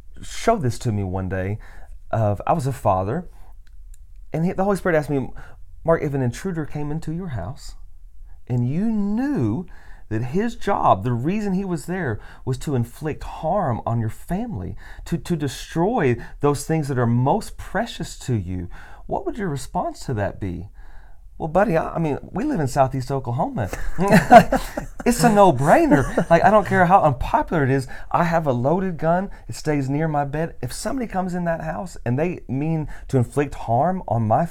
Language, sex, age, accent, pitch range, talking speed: English, male, 30-49, American, 100-160 Hz, 185 wpm